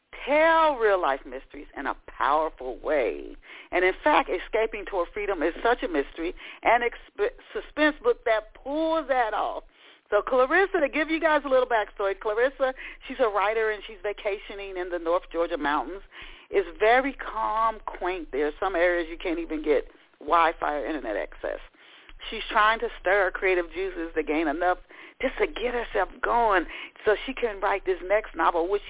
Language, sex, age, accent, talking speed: English, female, 40-59, American, 175 wpm